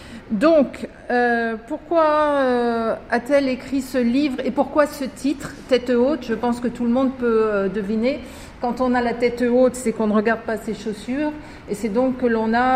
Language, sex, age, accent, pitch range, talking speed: French, female, 50-69, French, 210-255 Hz, 205 wpm